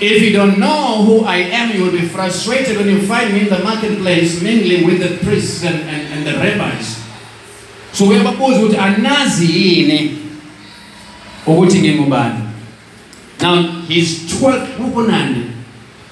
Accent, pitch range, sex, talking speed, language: South African, 165-215 Hz, male, 130 wpm, English